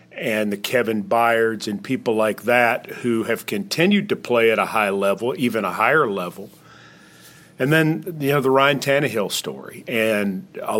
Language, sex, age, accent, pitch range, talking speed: English, male, 40-59, American, 120-150 Hz, 170 wpm